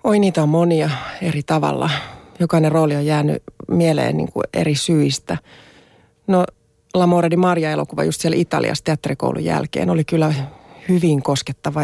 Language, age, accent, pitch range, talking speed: Finnish, 30-49, native, 140-175 Hz, 135 wpm